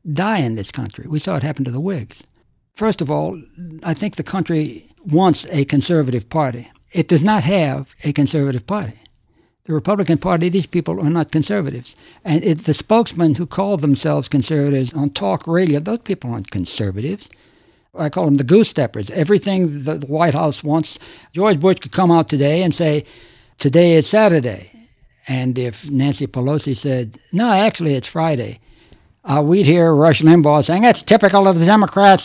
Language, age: English, 60-79